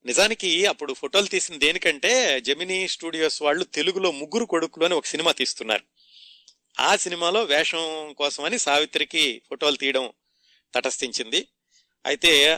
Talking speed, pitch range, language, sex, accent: 115 wpm, 135-170 Hz, Telugu, male, native